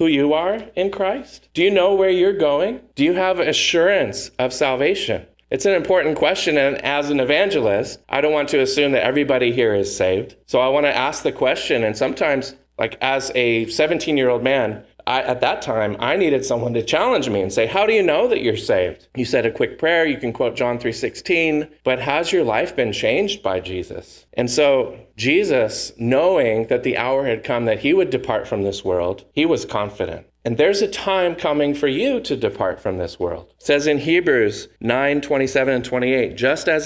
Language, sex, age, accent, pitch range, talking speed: English, male, 40-59, American, 130-175 Hz, 205 wpm